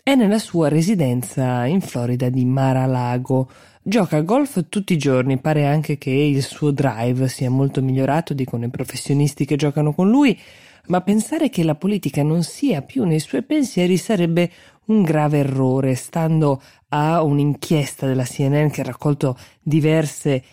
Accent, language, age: native, Italian, 20-39